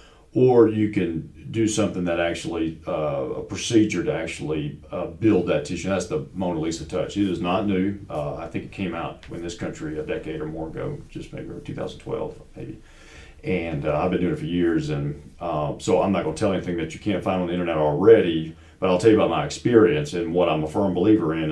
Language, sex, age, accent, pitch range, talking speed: English, male, 40-59, American, 80-105 Hz, 230 wpm